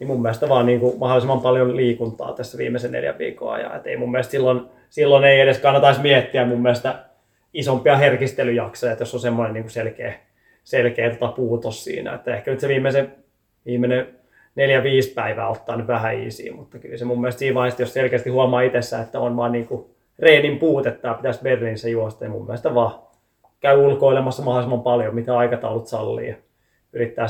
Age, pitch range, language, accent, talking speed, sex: 20-39, 120-135 Hz, Finnish, native, 165 wpm, male